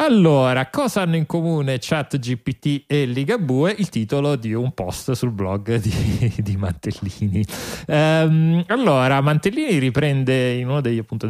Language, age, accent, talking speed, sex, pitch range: Italian, 30-49, native, 125 wpm, male, 110-140 Hz